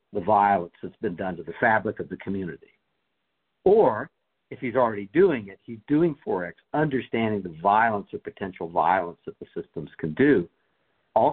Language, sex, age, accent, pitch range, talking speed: English, male, 60-79, American, 100-130 Hz, 170 wpm